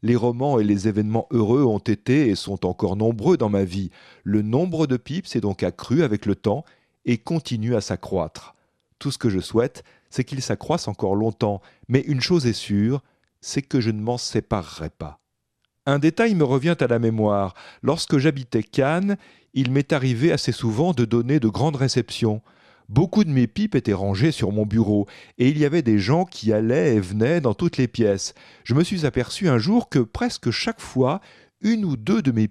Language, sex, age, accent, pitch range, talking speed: French, male, 40-59, French, 105-155 Hz, 200 wpm